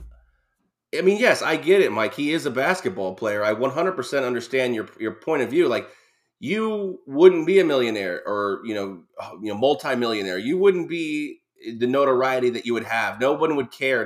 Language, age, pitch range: English, 20-39, 115-160 Hz